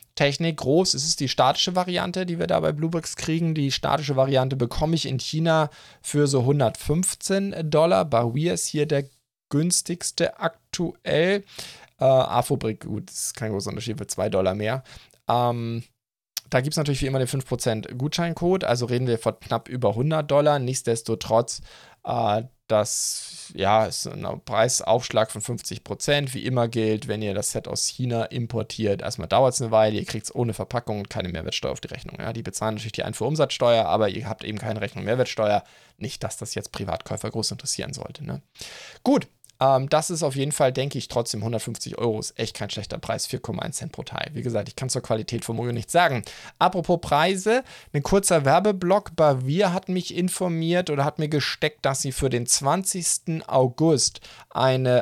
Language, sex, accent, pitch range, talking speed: German, male, German, 115-160 Hz, 185 wpm